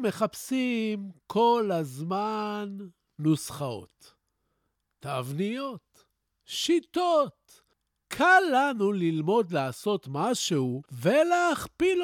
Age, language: 50-69, Hebrew